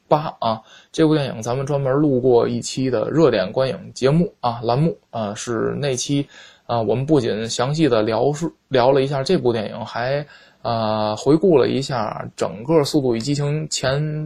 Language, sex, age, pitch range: Chinese, male, 20-39, 120-150 Hz